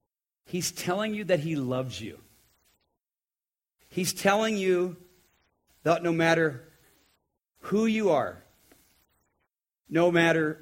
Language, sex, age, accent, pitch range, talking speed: English, male, 50-69, American, 130-175 Hz, 100 wpm